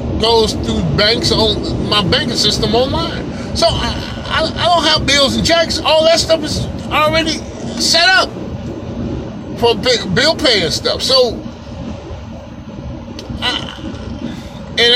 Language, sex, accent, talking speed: English, male, American, 110 wpm